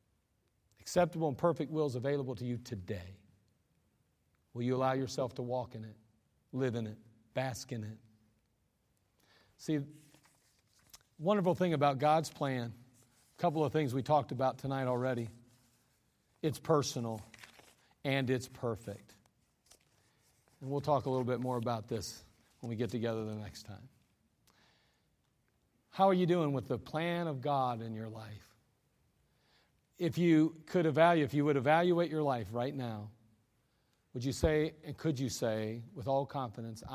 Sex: male